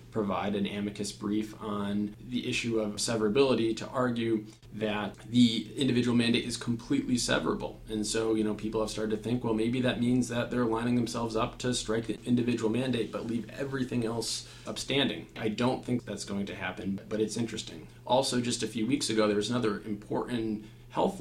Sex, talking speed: male, 190 wpm